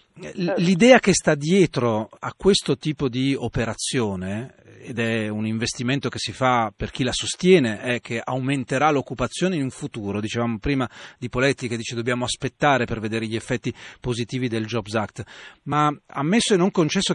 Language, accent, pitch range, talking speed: Italian, native, 120-160 Hz, 170 wpm